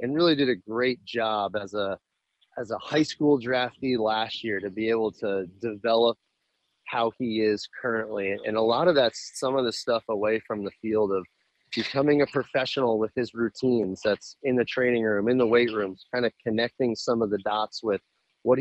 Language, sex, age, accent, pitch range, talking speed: English, male, 30-49, American, 105-125 Hz, 200 wpm